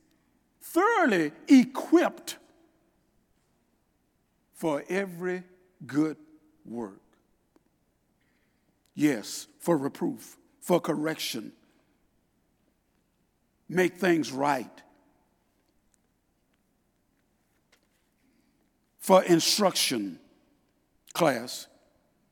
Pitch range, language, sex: 180-295 Hz, English, male